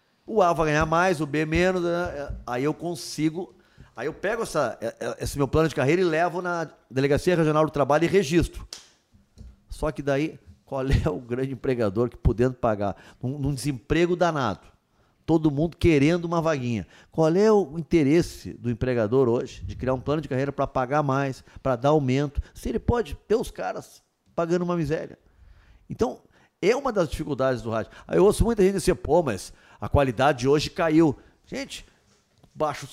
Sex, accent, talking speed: male, Brazilian, 185 wpm